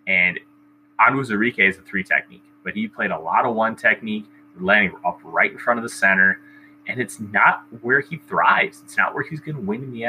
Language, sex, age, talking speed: English, male, 20-39, 225 wpm